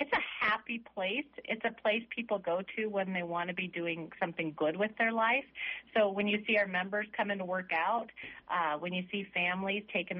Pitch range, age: 165-205 Hz, 30-49